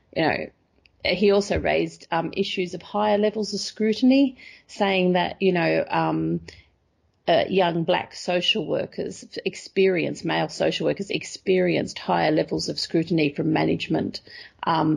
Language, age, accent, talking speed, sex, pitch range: English, 40-59, Australian, 135 wpm, female, 160-195 Hz